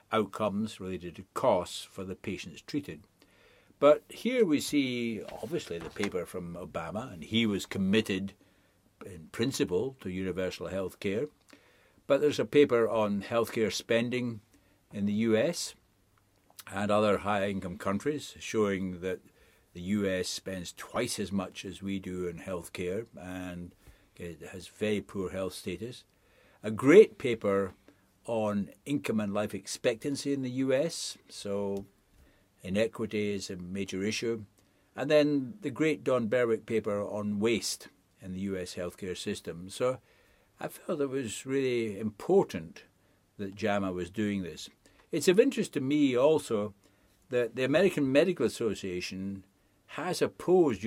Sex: male